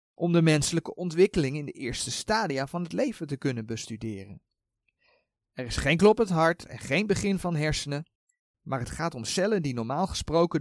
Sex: male